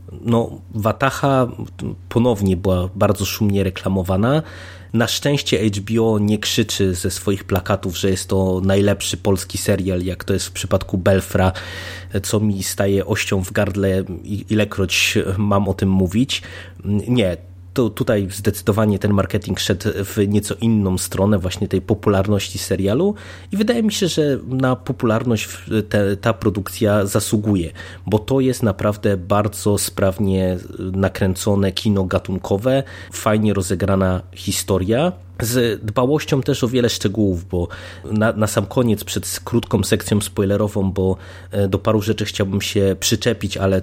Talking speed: 135 wpm